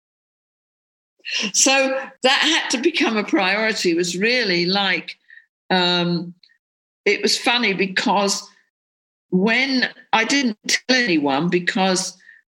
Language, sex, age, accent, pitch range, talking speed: English, female, 50-69, British, 190-300 Hz, 105 wpm